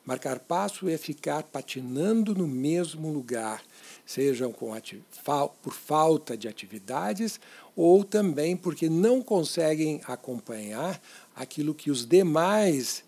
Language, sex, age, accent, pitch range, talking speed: Portuguese, male, 60-79, Brazilian, 130-195 Hz, 105 wpm